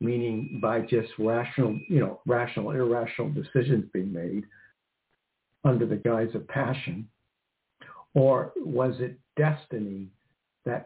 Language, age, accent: English, 60-79, American